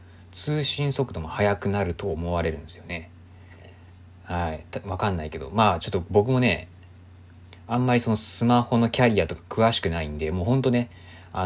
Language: Japanese